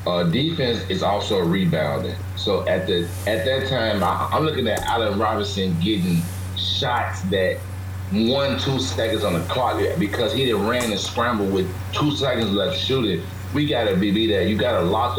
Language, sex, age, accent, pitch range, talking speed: English, male, 30-49, American, 95-115 Hz, 175 wpm